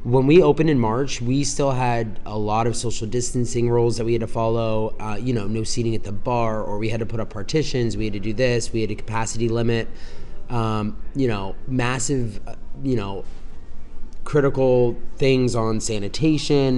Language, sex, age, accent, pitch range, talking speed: English, male, 20-39, American, 110-130 Hz, 195 wpm